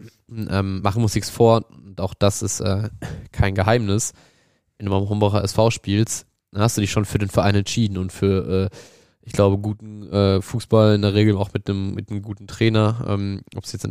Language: German